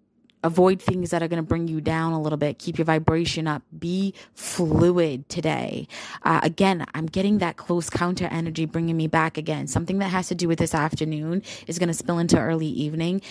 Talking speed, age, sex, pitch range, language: 205 wpm, 20-39, female, 160-180 Hz, English